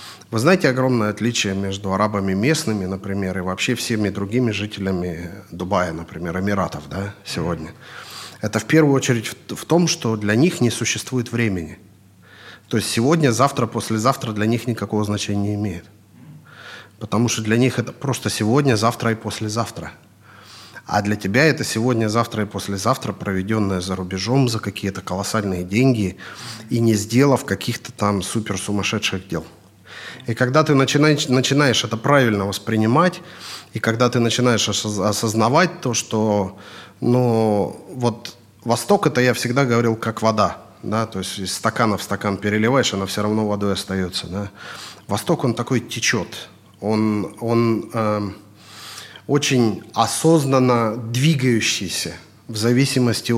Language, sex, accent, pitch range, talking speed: Russian, male, native, 100-120 Hz, 140 wpm